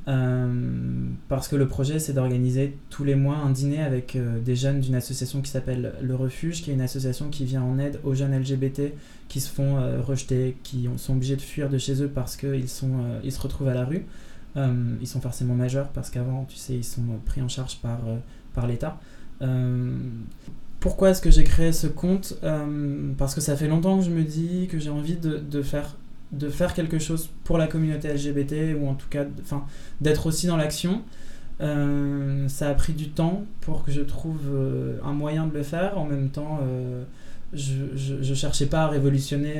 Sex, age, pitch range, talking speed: male, 20-39, 130-150 Hz, 210 wpm